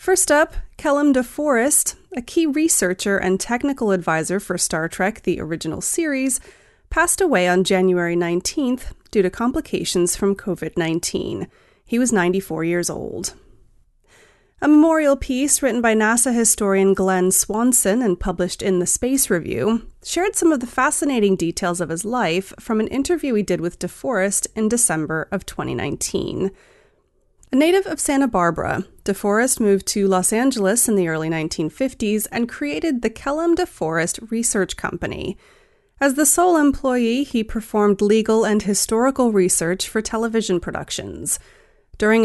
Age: 30-49